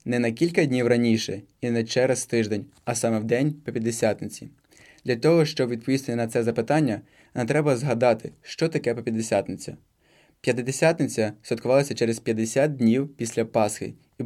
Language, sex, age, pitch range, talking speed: Ukrainian, male, 20-39, 115-135 Hz, 145 wpm